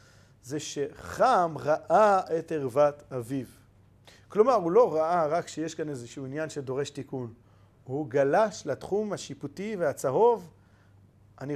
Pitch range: 150-230 Hz